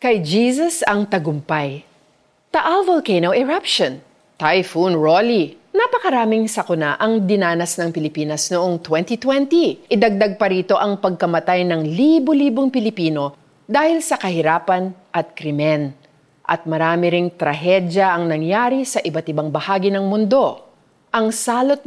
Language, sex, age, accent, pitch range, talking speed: Filipino, female, 40-59, native, 160-255 Hz, 120 wpm